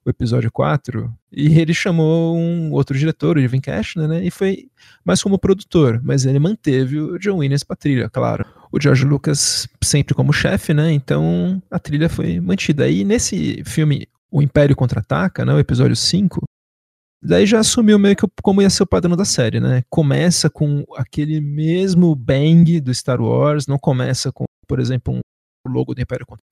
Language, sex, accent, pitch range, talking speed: Portuguese, male, Brazilian, 130-160 Hz, 185 wpm